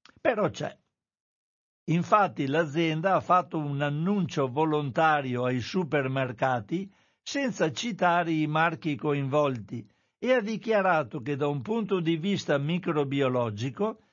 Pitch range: 135-185 Hz